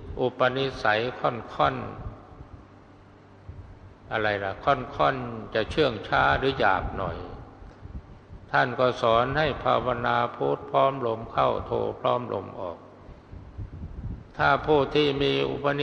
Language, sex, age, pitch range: Thai, male, 60-79, 100-130 Hz